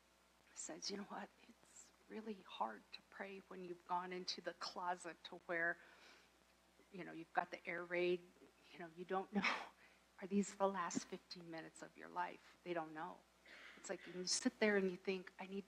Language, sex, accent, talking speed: English, female, American, 195 wpm